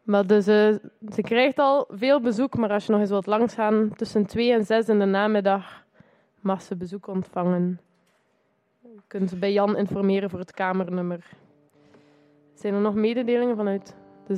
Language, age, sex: Dutch, 20-39, female